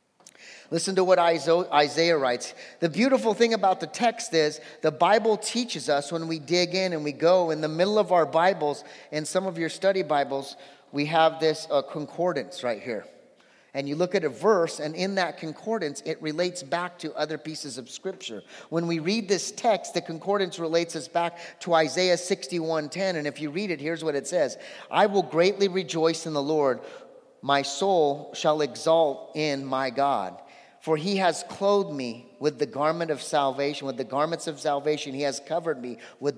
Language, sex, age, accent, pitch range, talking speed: English, male, 30-49, American, 145-185 Hz, 190 wpm